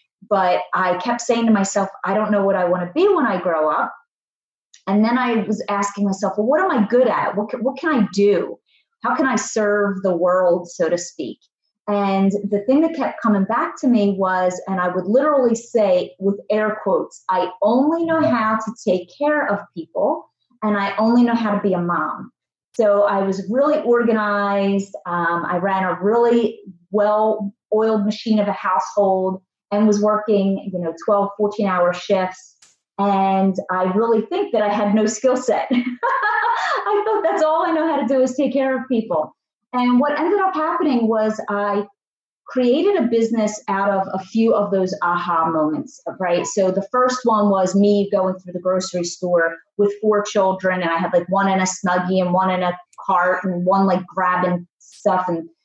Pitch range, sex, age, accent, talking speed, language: 185-230 Hz, female, 30-49, American, 195 wpm, English